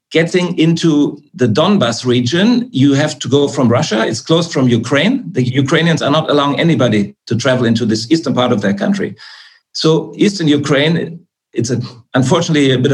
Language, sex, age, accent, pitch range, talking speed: English, male, 50-69, German, 130-165 Hz, 170 wpm